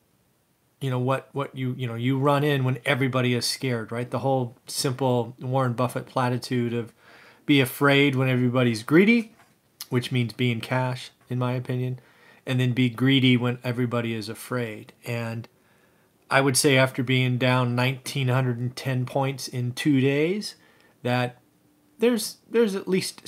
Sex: male